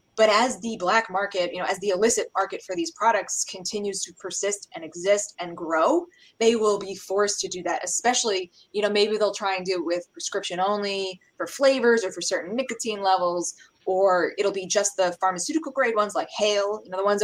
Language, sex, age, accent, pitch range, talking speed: English, female, 20-39, American, 185-230 Hz, 210 wpm